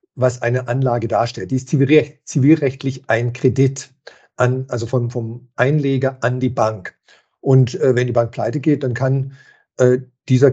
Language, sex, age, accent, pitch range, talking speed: German, male, 50-69, German, 125-150 Hz, 160 wpm